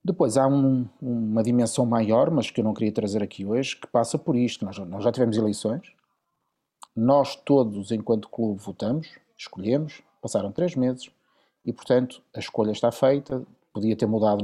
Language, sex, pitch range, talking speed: Portuguese, male, 110-140 Hz, 170 wpm